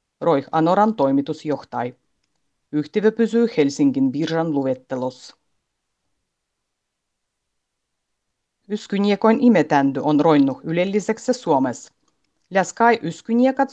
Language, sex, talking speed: Finnish, female, 75 wpm